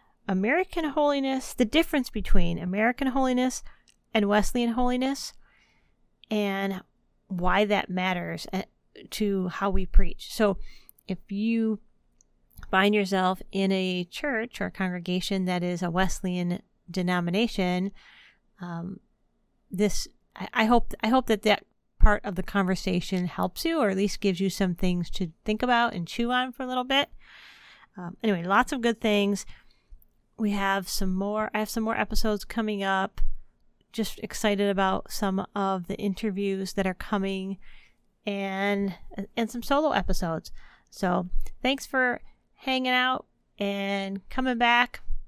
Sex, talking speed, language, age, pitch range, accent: female, 140 wpm, English, 30-49, 190-230 Hz, American